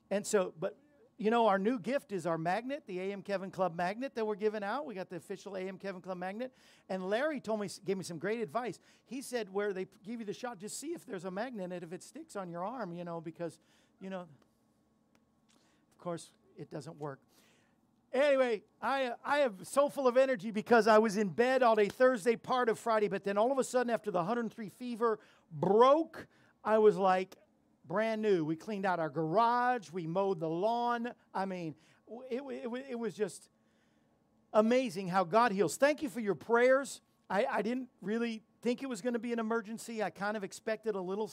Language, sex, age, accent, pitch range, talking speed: English, male, 50-69, American, 190-235 Hz, 210 wpm